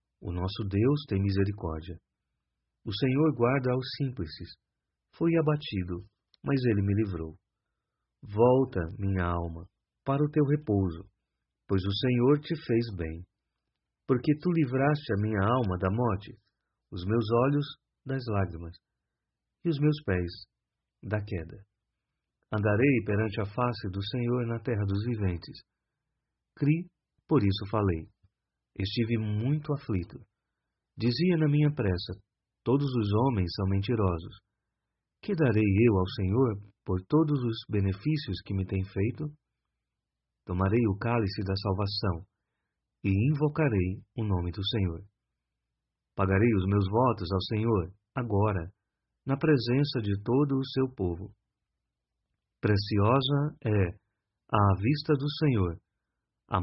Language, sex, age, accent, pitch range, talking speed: Portuguese, male, 40-59, Brazilian, 95-130 Hz, 125 wpm